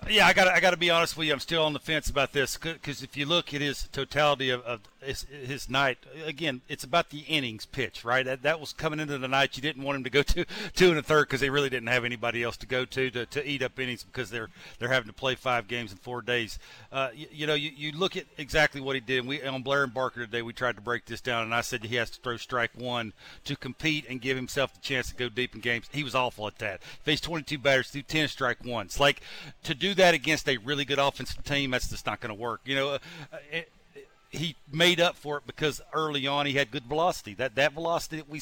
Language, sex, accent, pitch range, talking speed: English, male, American, 130-155 Hz, 275 wpm